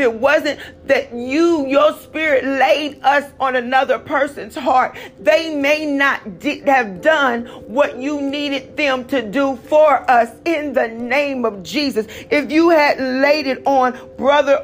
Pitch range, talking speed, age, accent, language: 230-285 Hz, 155 wpm, 40-59, American, English